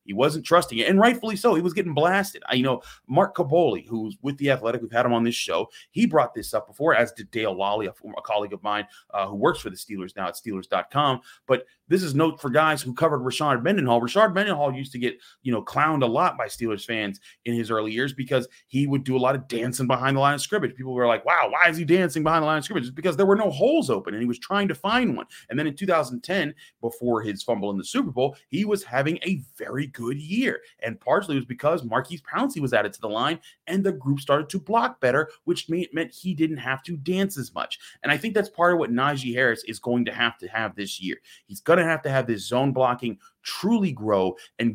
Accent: American